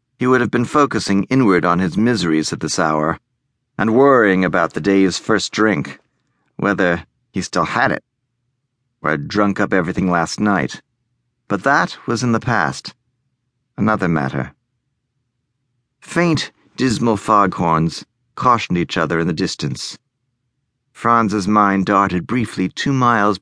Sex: male